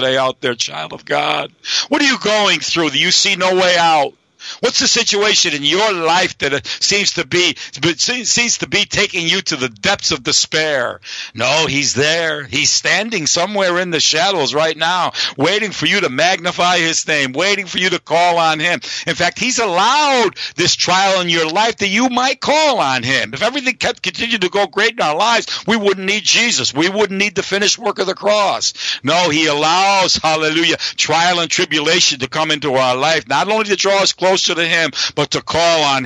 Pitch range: 145-185 Hz